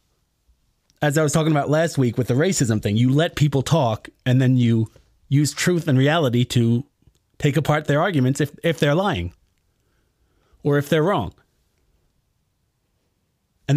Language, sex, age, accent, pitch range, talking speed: English, male, 30-49, American, 120-150 Hz, 155 wpm